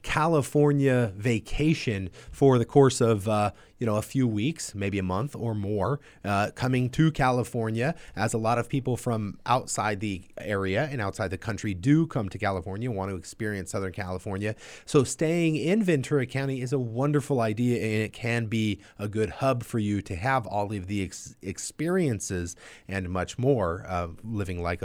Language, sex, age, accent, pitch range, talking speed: English, male, 30-49, American, 100-135 Hz, 175 wpm